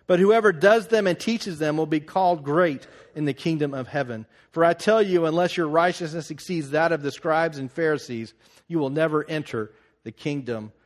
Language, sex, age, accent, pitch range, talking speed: English, male, 40-59, American, 130-180 Hz, 200 wpm